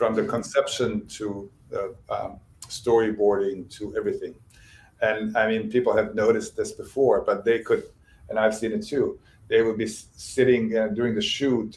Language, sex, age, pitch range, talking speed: English, male, 50-69, 110-140 Hz, 170 wpm